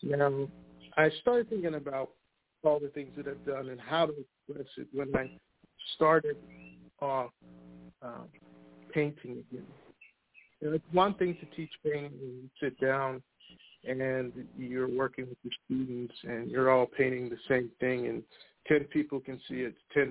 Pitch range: 125-150 Hz